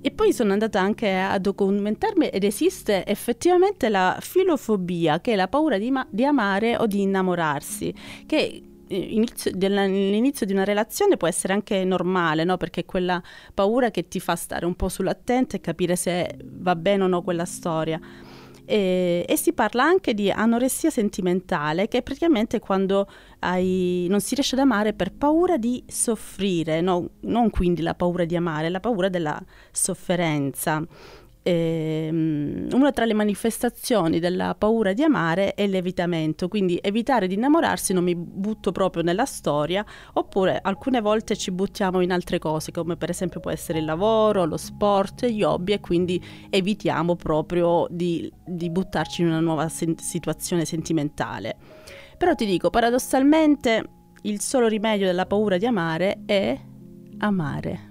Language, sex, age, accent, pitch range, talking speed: Italian, female, 30-49, native, 175-220 Hz, 155 wpm